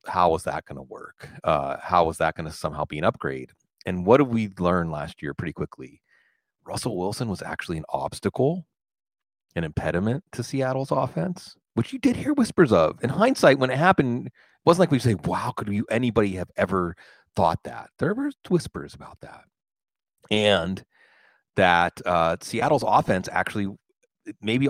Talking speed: 175 wpm